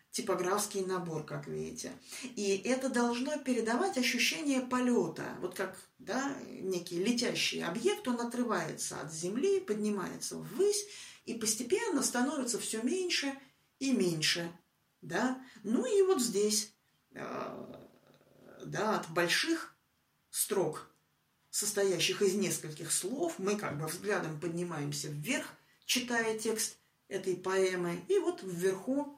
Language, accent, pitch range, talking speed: Russian, native, 175-245 Hz, 115 wpm